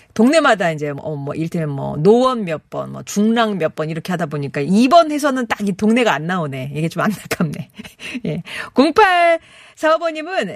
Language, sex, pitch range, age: Korean, female, 155-240 Hz, 40-59